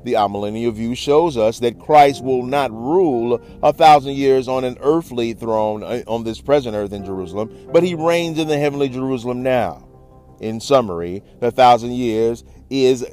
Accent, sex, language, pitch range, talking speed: American, male, English, 105-130 Hz, 170 wpm